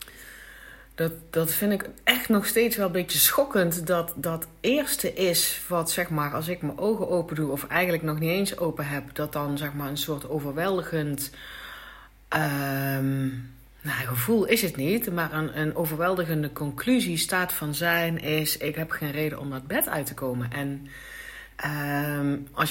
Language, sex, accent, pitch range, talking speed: Dutch, female, Dutch, 140-200 Hz, 160 wpm